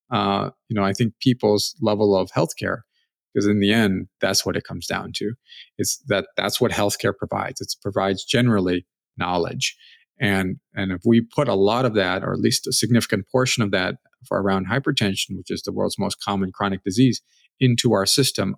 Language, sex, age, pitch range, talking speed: English, male, 40-59, 100-125 Hz, 195 wpm